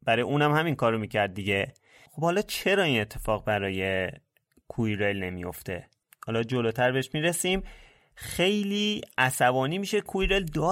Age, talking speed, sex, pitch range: 30-49, 135 wpm, male, 110-150 Hz